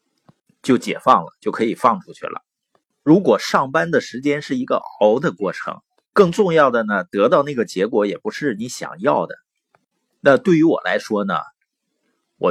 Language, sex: Chinese, male